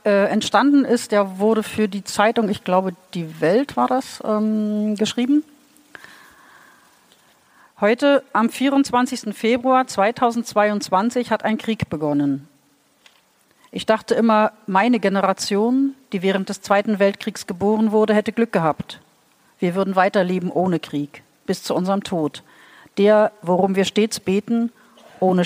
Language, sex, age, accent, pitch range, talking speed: German, female, 50-69, German, 165-220 Hz, 125 wpm